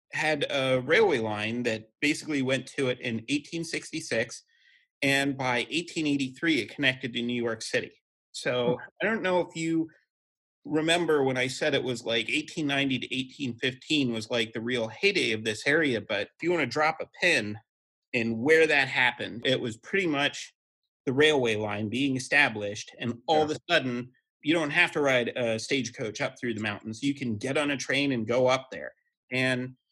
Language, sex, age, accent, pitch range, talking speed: English, male, 30-49, American, 120-155 Hz, 200 wpm